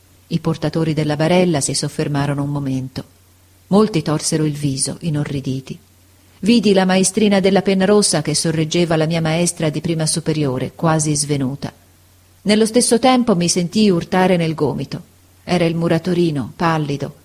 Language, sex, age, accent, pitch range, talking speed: Italian, female, 40-59, native, 145-200 Hz, 145 wpm